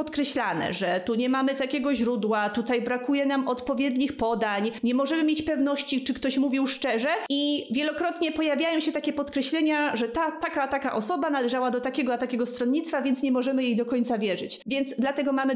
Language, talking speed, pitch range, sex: Polish, 180 wpm, 230-280 Hz, female